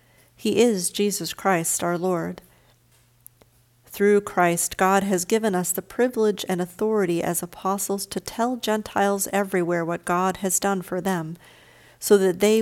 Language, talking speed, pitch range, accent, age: English, 145 wpm, 170-195 Hz, American, 50-69